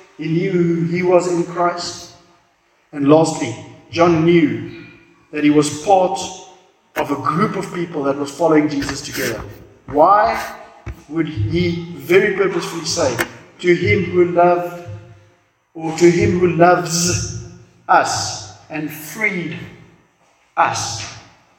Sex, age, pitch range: male, 50-69, 150-175 Hz